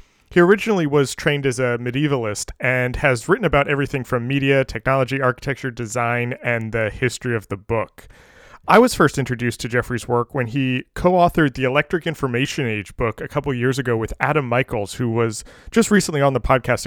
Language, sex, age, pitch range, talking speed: English, male, 20-39, 120-150 Hz, 185 wpm